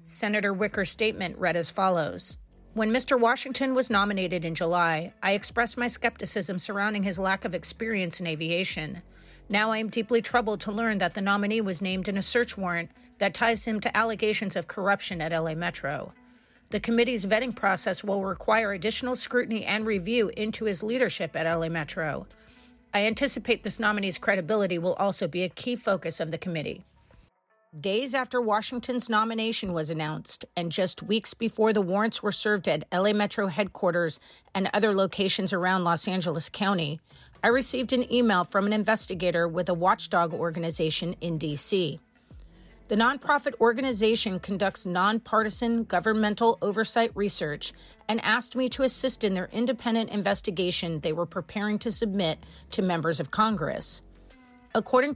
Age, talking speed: 40-59, 160 wpm